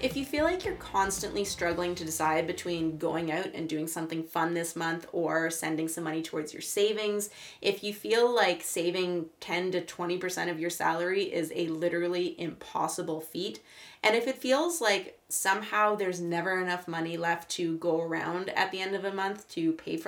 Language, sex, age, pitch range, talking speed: English, female, 20-39, 170-210 Hz, 190 wpm